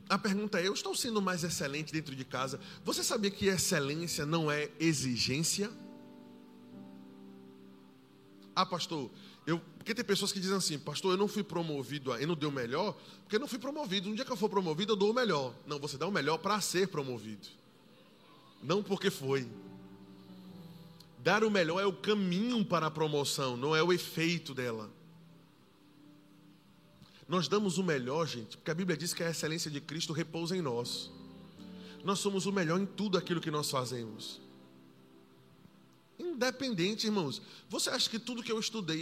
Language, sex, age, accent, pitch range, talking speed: Portuguese, male, 20-39, Brazilian, 145-205 Hz, 175 wpm